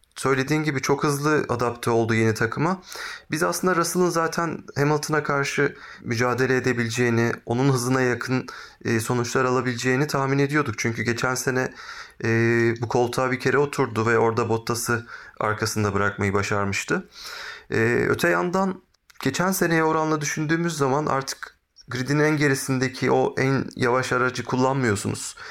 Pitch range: 115-140 Hz